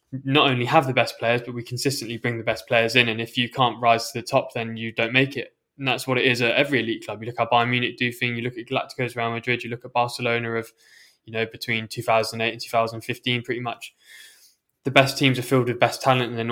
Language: English